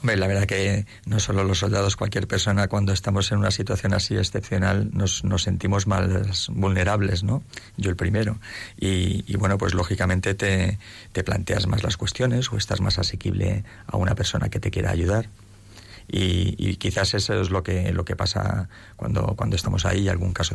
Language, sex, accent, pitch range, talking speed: Spanish, male, Spanish, 95-105 Hz, 190 wpm